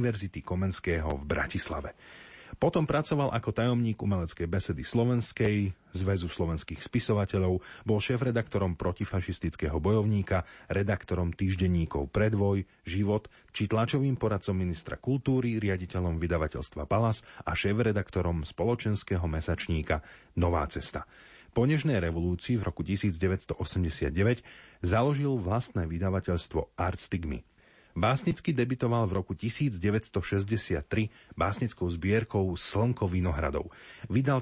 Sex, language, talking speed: male, Slovak, 100 wpm